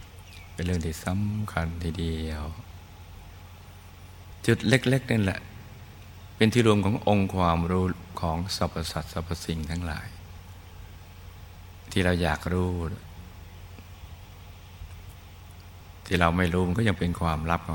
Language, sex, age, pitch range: Thai, male, 60-79, 85-95 Hz